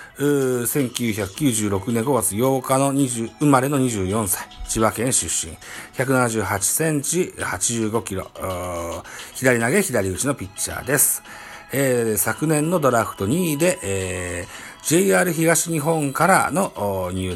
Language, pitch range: Japanese, 100-135 Hz